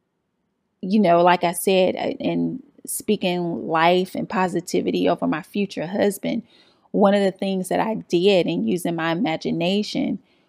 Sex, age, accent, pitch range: female, 30-49, American, 170-205 Hz